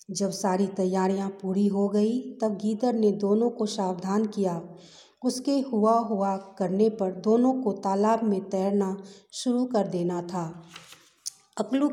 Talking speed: 140 wpm